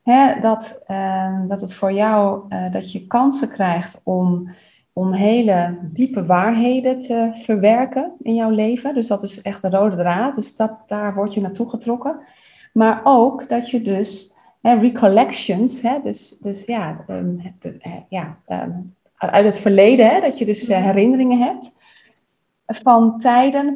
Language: Dutch